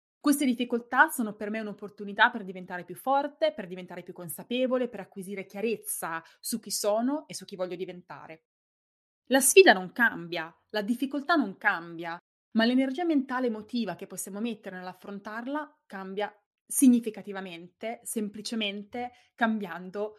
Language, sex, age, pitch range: Italian, female, 20-39, 185-240 Hz